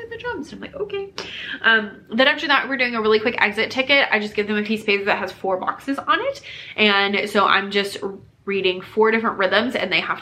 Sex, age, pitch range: female, 20-39, 180-235 Hz